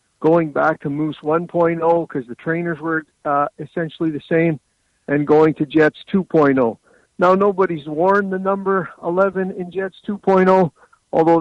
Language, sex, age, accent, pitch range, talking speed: English, male, 50-69, American, 155-190 Hz, 145 wpm